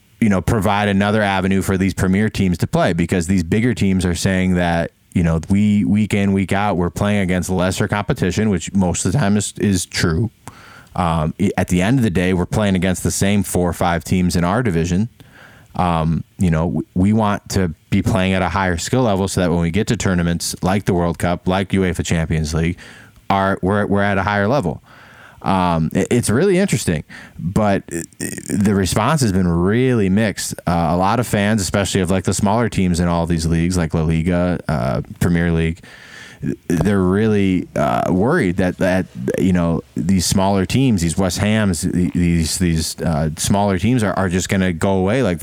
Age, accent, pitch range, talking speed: 20-39, American, 90-105 Hz, 200 wpm